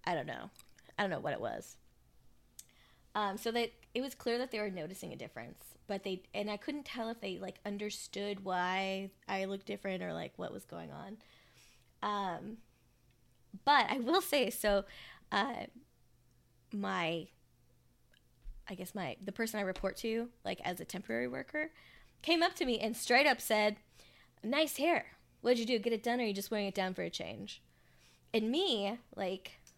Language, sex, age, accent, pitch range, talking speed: English, female, 10-29, American, 190-240 Hz, 185 wpm